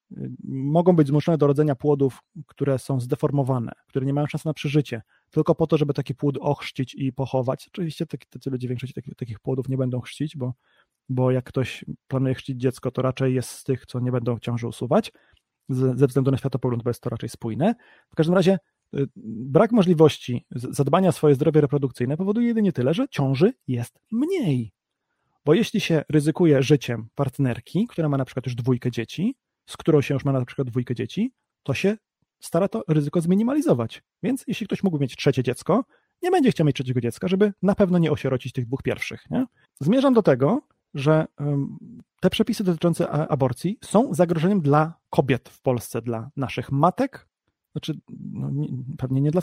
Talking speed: 180 wpm